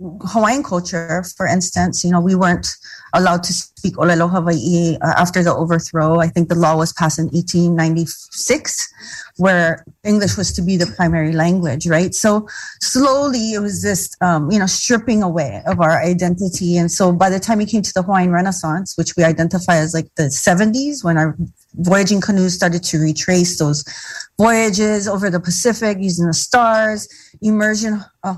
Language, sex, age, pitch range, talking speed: English, female, 30-49, 170-210 Hz, 170 wpm